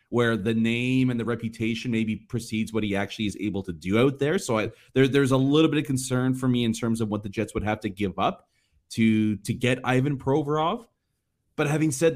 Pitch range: 110-155 Hz